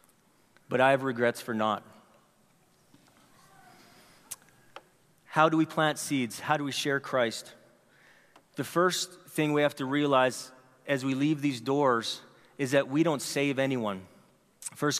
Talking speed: 140 wpm